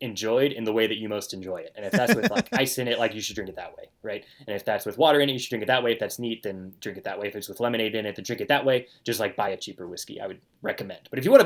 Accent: American